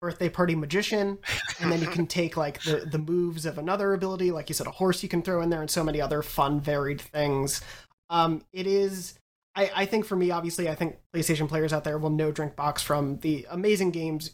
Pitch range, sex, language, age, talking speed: 150-175 Hz, male, English, 30-49, 230 wpm